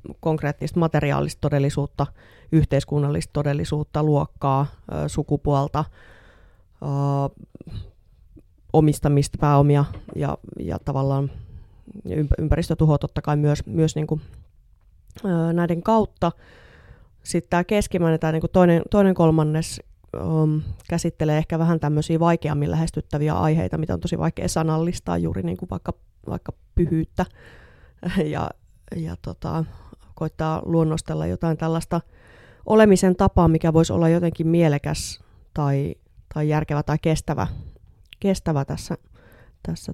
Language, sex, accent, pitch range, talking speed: Finnish, female, native, 140-165 Hz, 100 wpm